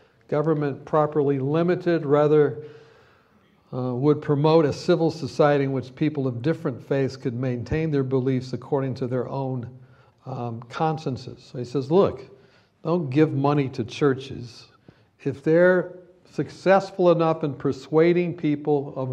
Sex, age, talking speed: male, 60-79, 130 wpm